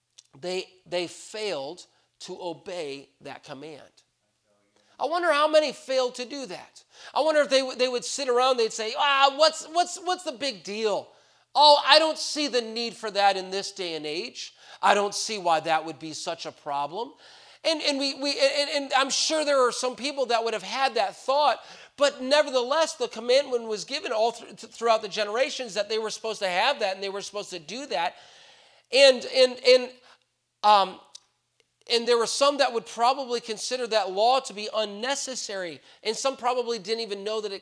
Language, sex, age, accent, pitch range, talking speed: English, male, 40-59, American, 200-275 Hz, 195 wpm